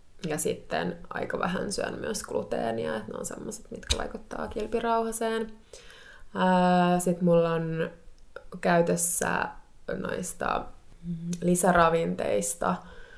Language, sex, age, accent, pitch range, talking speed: Finnish, female, 20-39, native, 165-185 Hz, 90 wpm